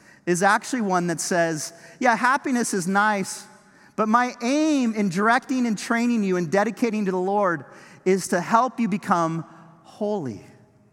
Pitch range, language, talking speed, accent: 165-215 Hz, English, 155 wpm, American